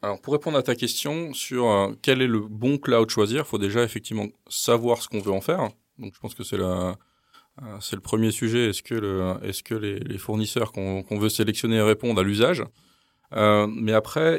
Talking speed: 215 wpm